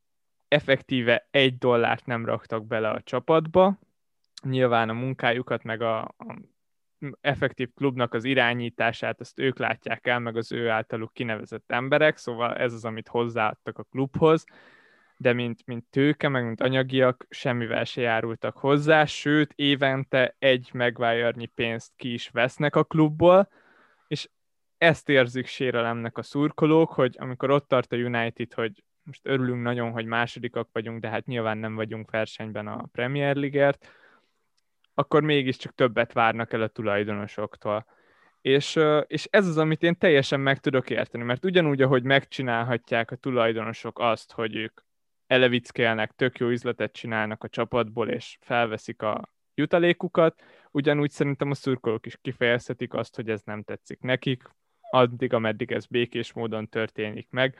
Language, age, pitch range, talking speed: Hungarian, 20-39, 115-140 Hz, 145 wpm